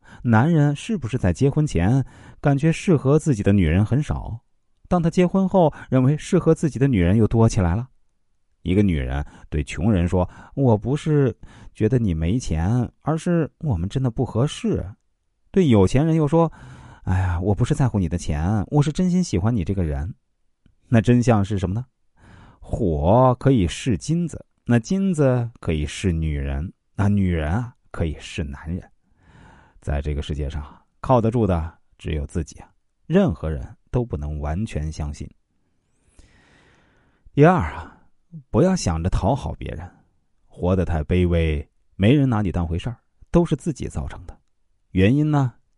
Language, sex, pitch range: Chinese, male, 85-130 Hz